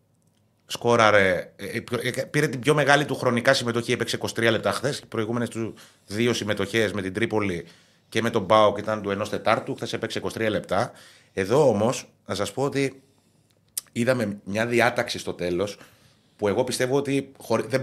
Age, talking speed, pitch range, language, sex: 30-49, 160 wpm, 100-120 Hz, Greek, male